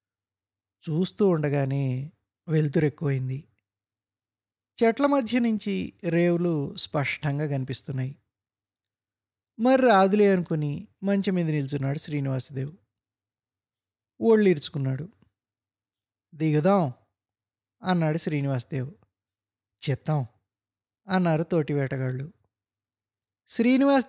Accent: native